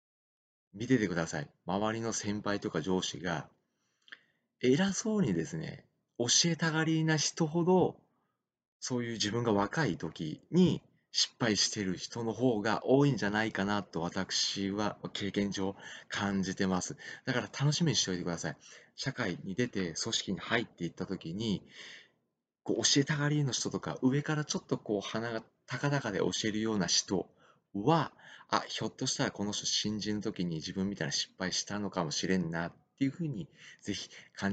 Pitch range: 100-135 Hz